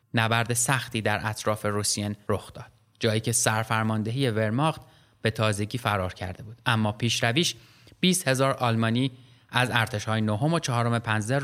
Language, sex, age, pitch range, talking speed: Persian, male, 30-49, 110-135 Hz, 140 wpm